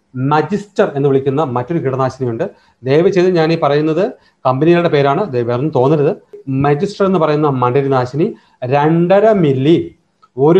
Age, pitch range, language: 30-49, 130-165 Hz, Malayalam